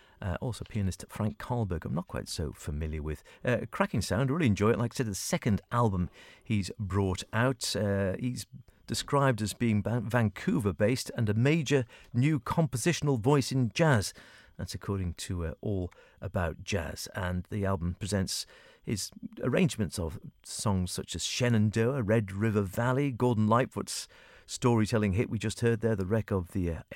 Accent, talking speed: British, 170 wpm